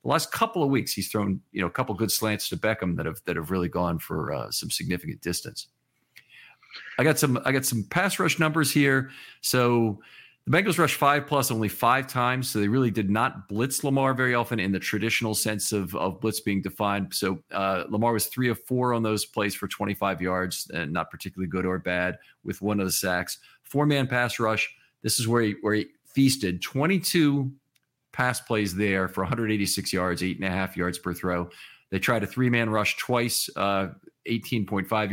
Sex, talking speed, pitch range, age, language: male, 210 wpm, 95-125 Hz, 40-59, English